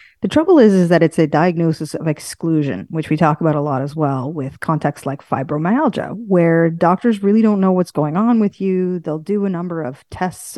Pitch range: 155-190 Hz